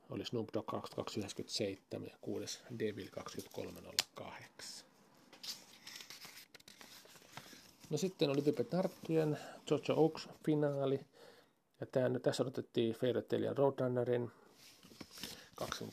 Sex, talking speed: male, 95 wpm